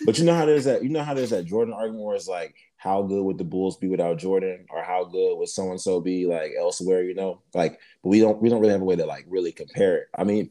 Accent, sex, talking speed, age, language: American, male, 295 wpm, 20-39, English